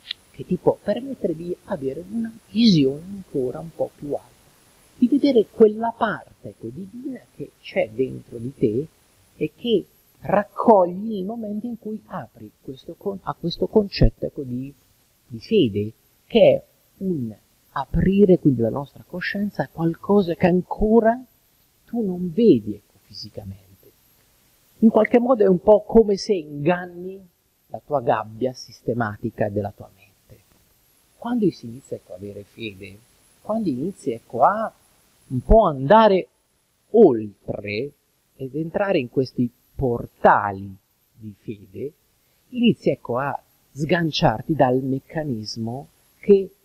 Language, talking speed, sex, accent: Italian, 130 wpm, male, native